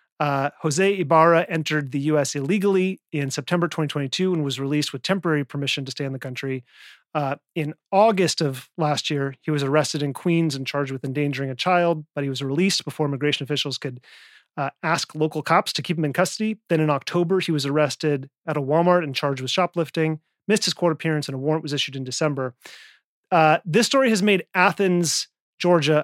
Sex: male